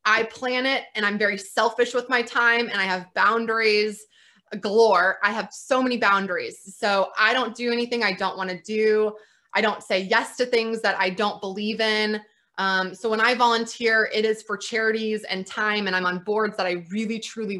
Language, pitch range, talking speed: English, 195-230 Hz, 205 wpm